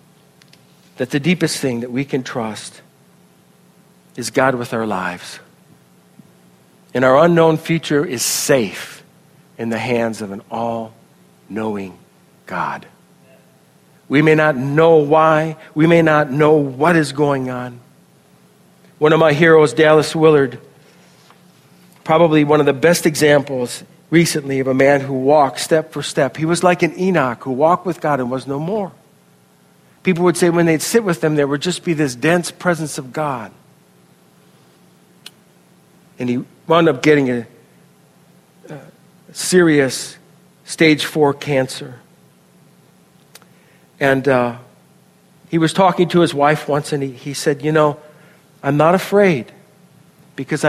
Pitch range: 125-165 Hz